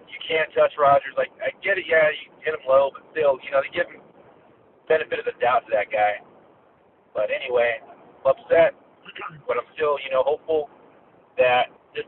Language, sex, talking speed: English, male, 200 wpm